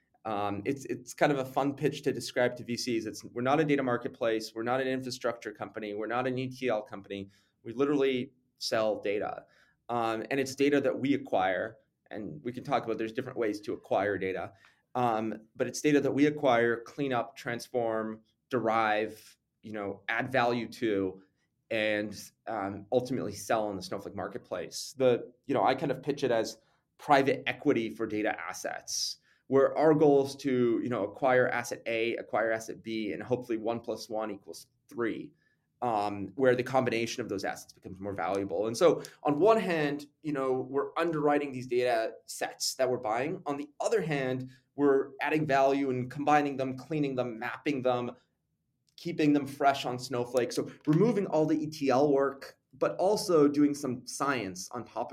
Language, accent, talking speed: English, American, 180 wpm